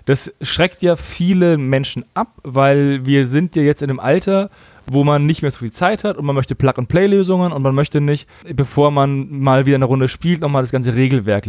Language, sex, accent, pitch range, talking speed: German, male, German, 135-185 Hz, 215 wpm